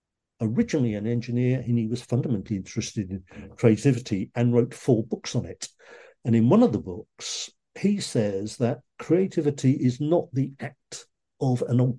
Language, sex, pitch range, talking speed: English, male, 115-150 Hz, 165 wpm